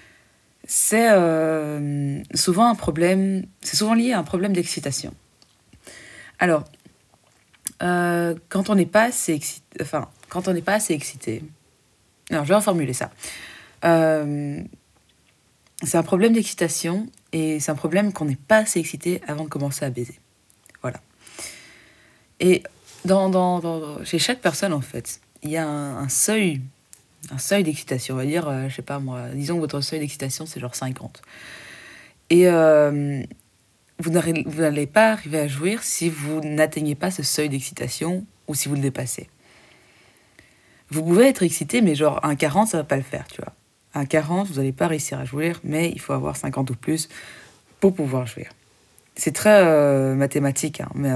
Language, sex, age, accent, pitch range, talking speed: French, female, 20-39, French, 140-175 Hz, 175 wpm